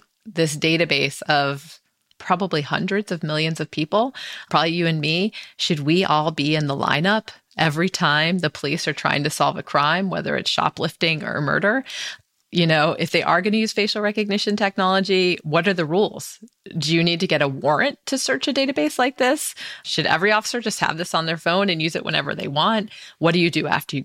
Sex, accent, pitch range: female, American, 150-195 Hz